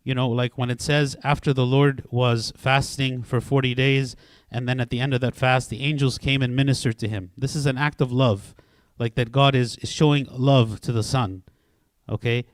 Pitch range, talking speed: 120-150 Hz, 220 wpm